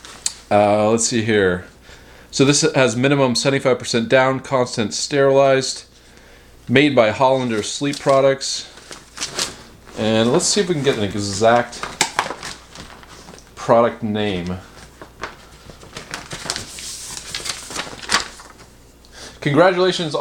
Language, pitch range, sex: English, 115-140 Hz, male